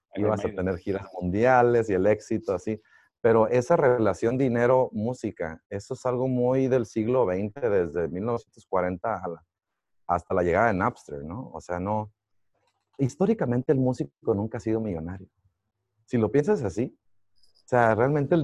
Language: Spanish